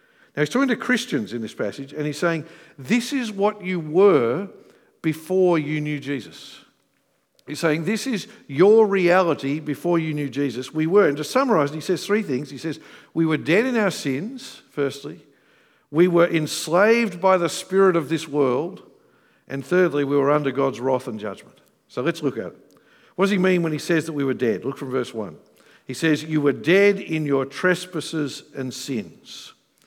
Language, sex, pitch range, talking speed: English, male, 145-185 Hz, 195 wpm